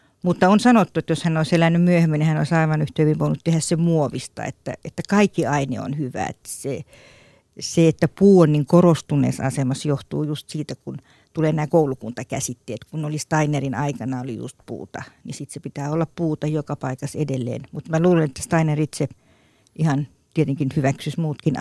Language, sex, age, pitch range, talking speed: Finnish, female, 50-69, 140-165 Hz, 185 wpm